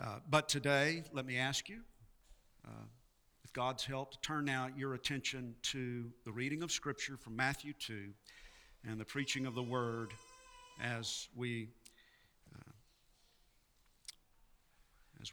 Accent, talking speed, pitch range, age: American, 130 wpm, 110-135 Hz, 50-69